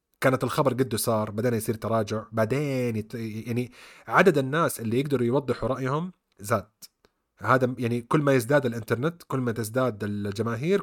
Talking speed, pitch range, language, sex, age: 150 wpm, 115-145 Hz, Arabic, male, 30-49